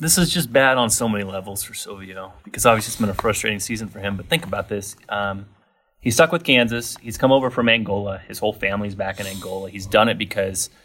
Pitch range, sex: 100-120 Hz, male